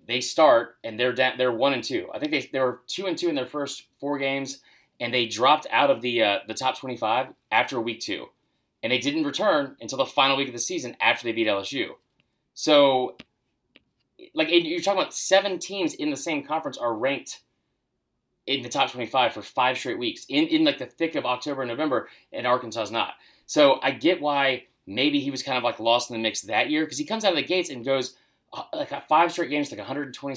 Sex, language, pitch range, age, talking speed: male, English, 130-195 Hz, 30-49, 230 wpm